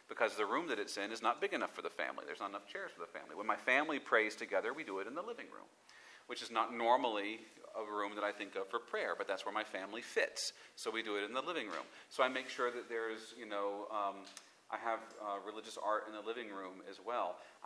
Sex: male